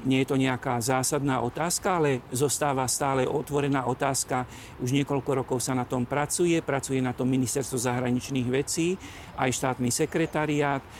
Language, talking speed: Slovak, 145 wpm